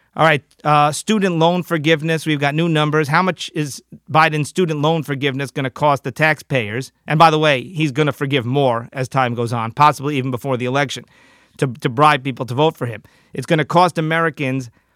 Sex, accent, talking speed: male, American, 215 wpm